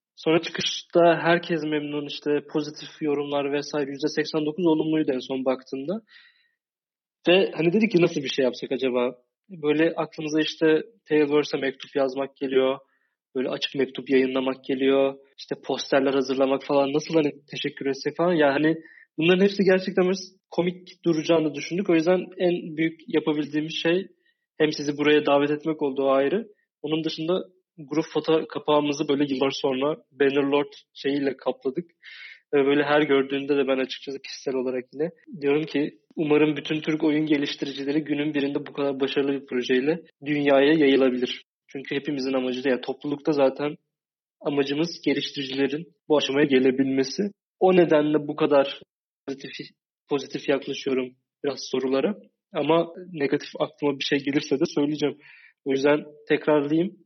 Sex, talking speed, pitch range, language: male, 140 wpm, 140-160 Hz, Turkish